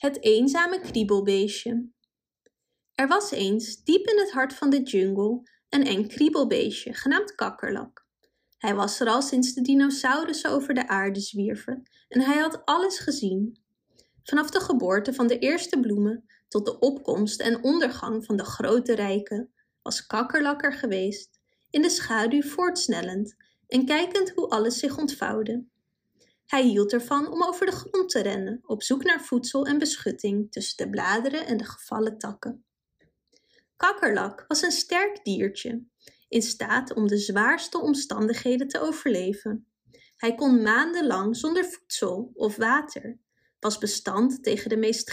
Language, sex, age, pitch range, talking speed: Dutch, female, 20-39, 215-295 Hz, 150 wpm